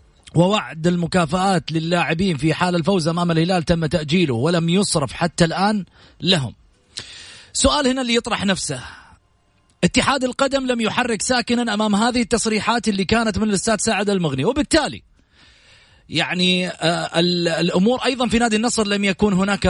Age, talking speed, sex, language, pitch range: 30-49, 135 wpm, male, English, 170-225 Hz